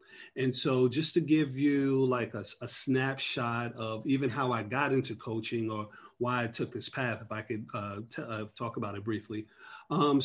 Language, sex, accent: English, male, American